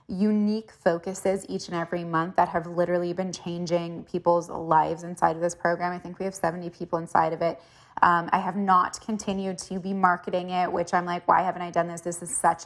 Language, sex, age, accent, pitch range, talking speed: English, female, 20-39, American, 170-190 Hz, 220 wpm